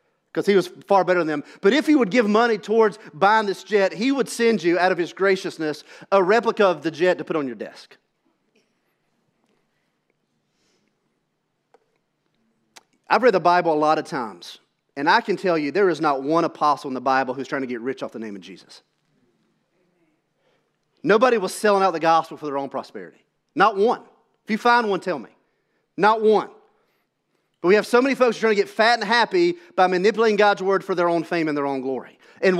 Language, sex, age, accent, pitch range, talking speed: English, male, 40-59, American, 170-220 Hz, 205 wpm